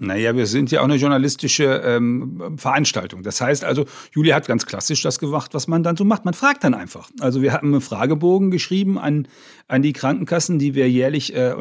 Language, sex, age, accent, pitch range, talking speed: German, male, 40-59, German, 130-160 Hz, 210 wpm